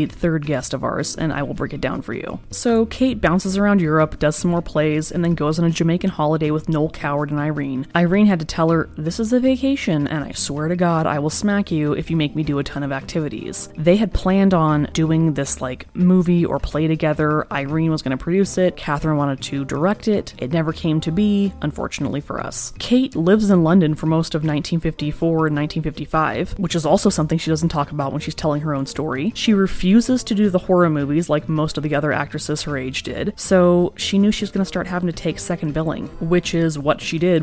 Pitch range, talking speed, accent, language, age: 150-180 Hz, 240 wpm, American, English, 20-39